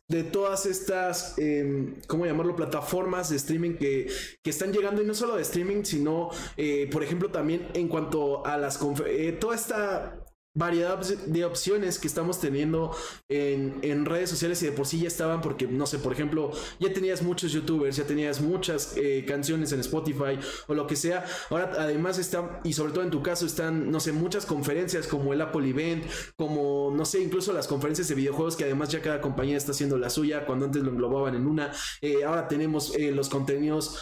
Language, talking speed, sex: Spanish, 200 wpm, male